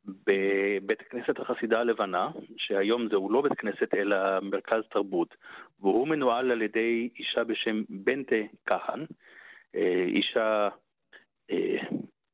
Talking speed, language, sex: 110 wpm, Hebrew, male